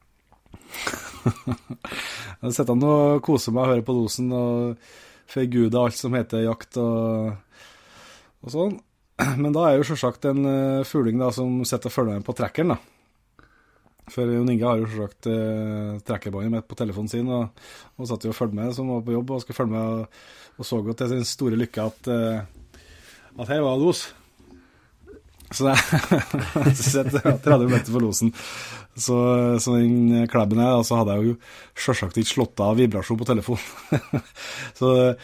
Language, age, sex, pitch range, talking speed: English, 20-39, male, 115-135 Hz, 175 wpm